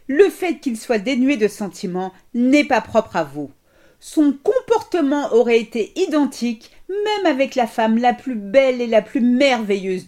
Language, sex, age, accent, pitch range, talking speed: French, female, 50-69, French, 220-305 Hz, 165 wpm